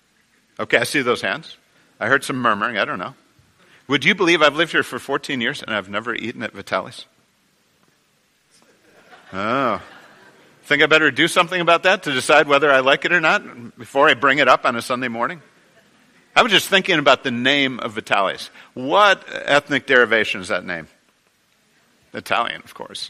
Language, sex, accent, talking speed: English, male, American, 180 wpm